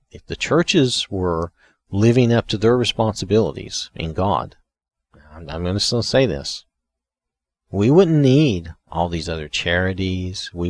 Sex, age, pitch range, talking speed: male, 40-59, 80-105 Hz, 140 wpm